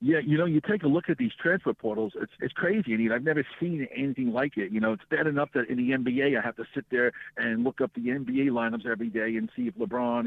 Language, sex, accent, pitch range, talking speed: English, male, American, 110-145 Hz, 280 wpm